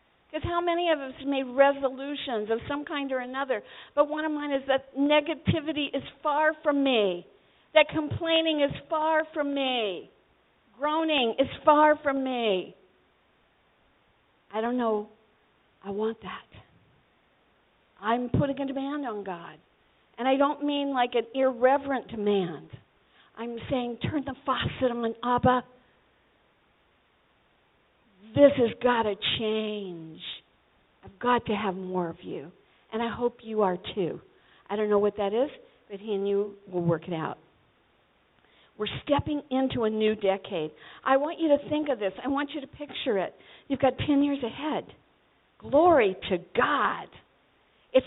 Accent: American